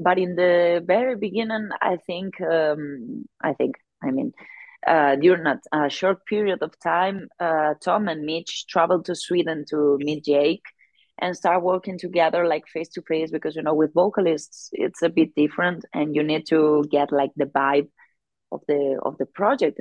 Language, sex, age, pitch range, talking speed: English, female, 30-49, 145-175 Hz, 180 wpm